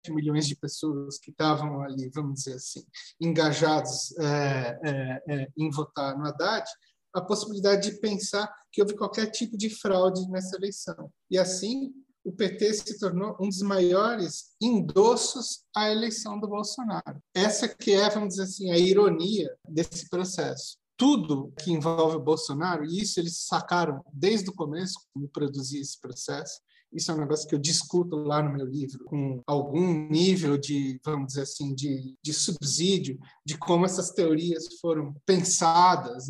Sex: male